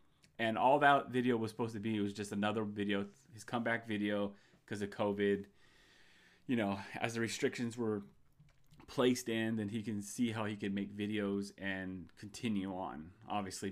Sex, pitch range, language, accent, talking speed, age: male, 105-125 Hz, English, American, 170 wpm, 30-49